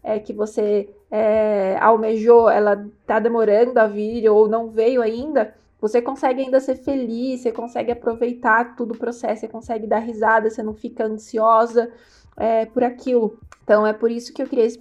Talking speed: 175 wpm